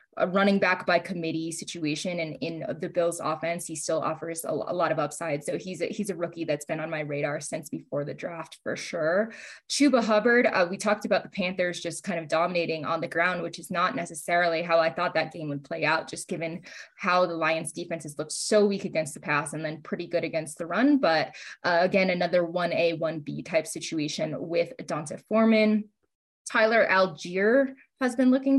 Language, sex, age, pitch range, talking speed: English, female, 20-39, 160-195 Hz, 205 wpm